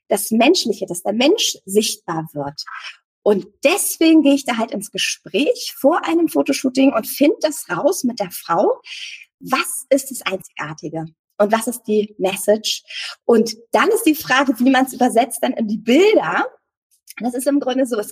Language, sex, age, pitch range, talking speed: German, female, 20-39, 205-280 Hz, 175 wpm